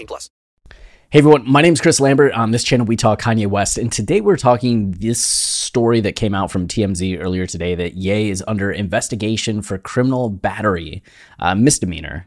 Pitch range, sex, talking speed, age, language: 90-115 Hz, male, 180 wpm, 20-39, English